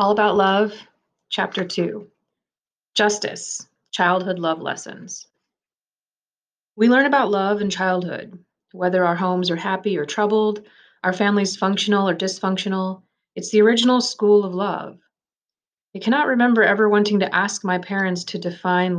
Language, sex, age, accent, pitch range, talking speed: English, female, 30-49, American, 180-210 Hz, 140 wpm